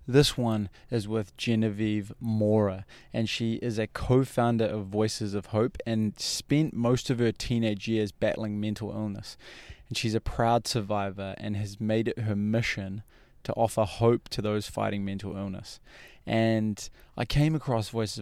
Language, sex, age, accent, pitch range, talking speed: English, male, 20-39, Australian, 105-120 Hz, 160 wpm